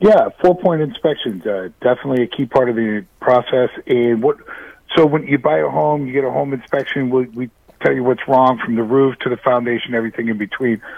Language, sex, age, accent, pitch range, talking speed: English, male, 50-69, American, 120-145 Hz, 220 wpm